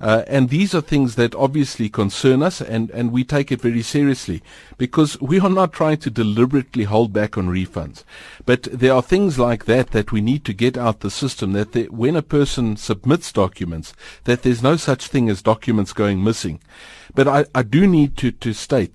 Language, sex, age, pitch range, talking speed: English, male, 50-69, 105-140 Hz, 205 wpm